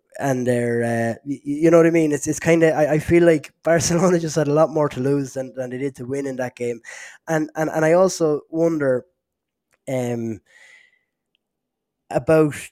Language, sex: English, male